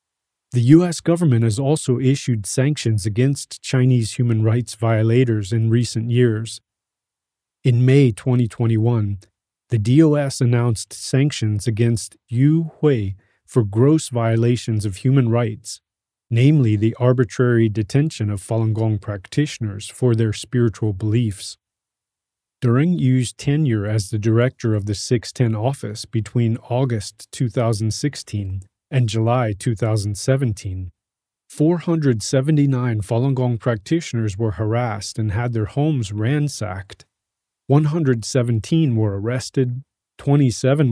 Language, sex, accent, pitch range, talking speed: English, male, American, 110-130 Hz, 110 wpm